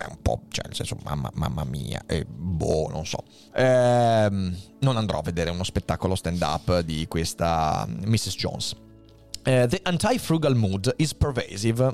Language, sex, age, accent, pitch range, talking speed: Italian, male, 30-49, native, 105-145 Hz, 160 wpm